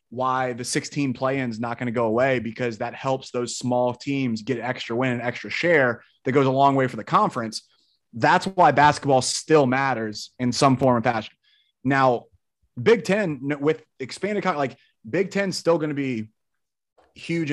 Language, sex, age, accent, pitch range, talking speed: English, male, 30-49, American, 125-145 Hz, 180 wpm